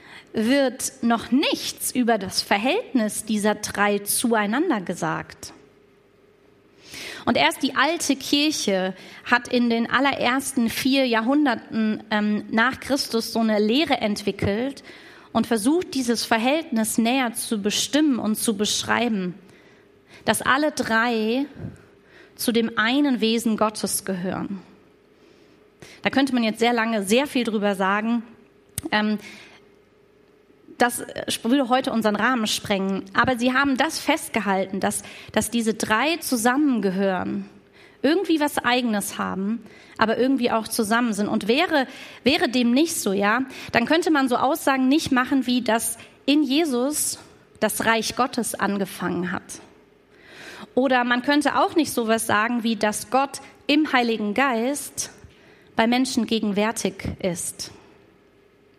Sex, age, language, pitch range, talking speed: female, 30-49, German, 215-270 Hz, 125 wpm